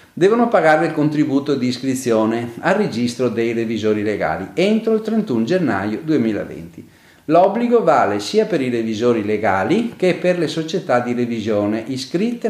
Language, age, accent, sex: Italian, 40-59, native, male